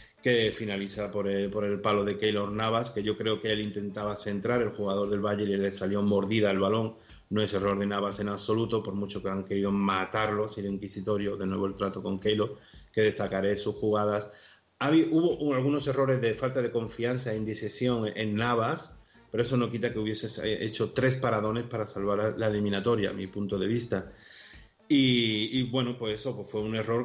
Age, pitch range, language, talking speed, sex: 30-49, 105-120 Hz, Spanish, 200 wpm, male